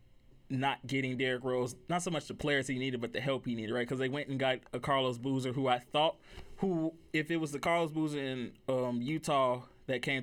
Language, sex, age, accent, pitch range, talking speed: English, male, 20-39, American, 125-135 Hz, 235 wpm